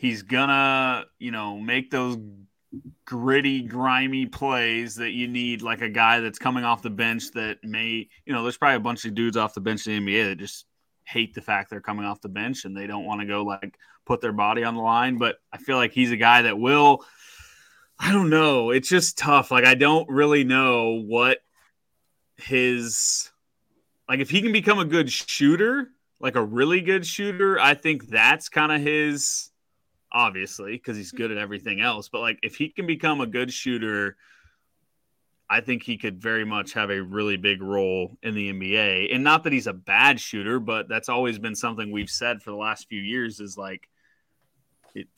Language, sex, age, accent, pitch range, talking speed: English, male, 20-39, American, 110-135 Hz, 205 wpm